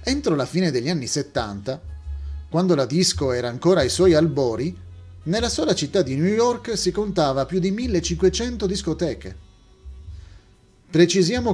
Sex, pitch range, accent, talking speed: male, 120-185 Hz, native, 140 wpm